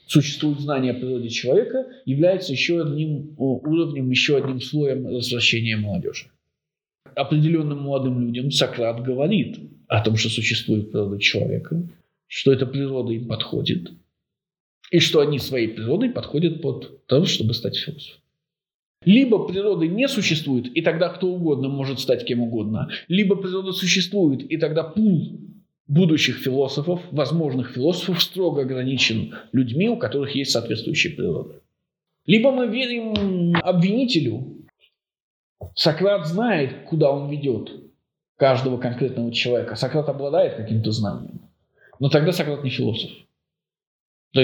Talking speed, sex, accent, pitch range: 125 wpm, male, native, 125-170 Hz